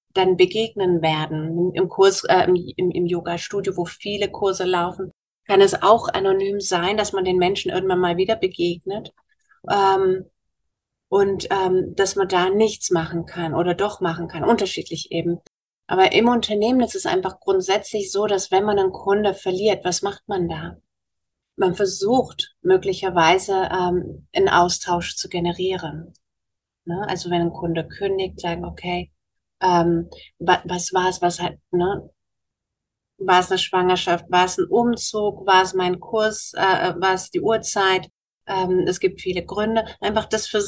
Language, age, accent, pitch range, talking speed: German, 30-49, German, 175-205 Hz, 160 wpm